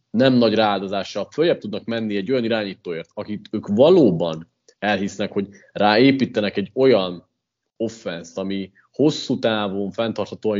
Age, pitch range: 30-49, 110-135 Hz